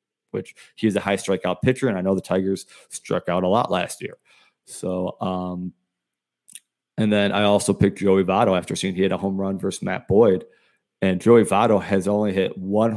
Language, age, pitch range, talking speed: English, 30-49, 95-110 Hz, 205 wpm